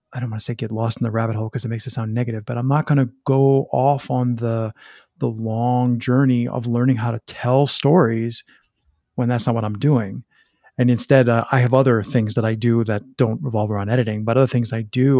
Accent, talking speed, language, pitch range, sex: American, 240 wpm, English, 115-135 Hz, male